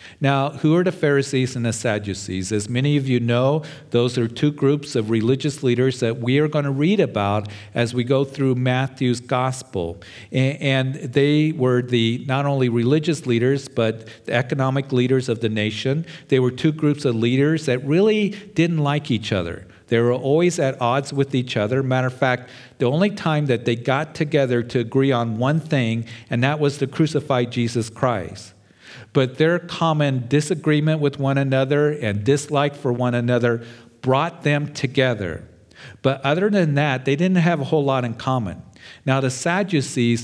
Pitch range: 120-145 Hz